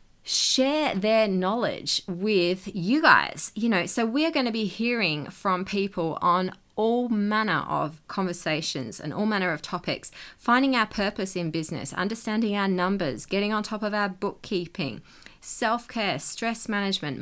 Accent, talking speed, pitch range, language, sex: Australian, 155 wpm, 165-220 Hz, English, female